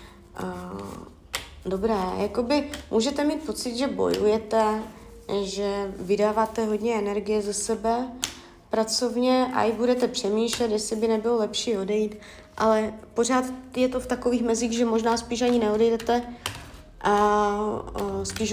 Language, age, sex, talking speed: Czech, 20-39, female, 120 wpm